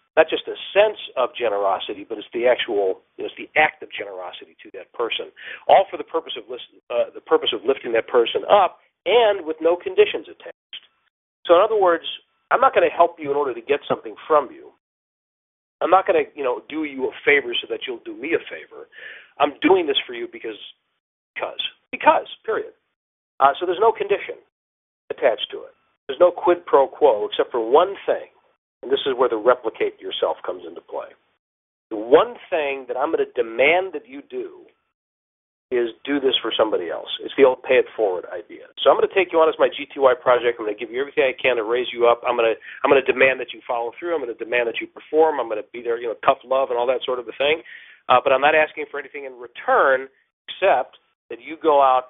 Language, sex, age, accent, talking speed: English, male, 50-69, American, 235 wpm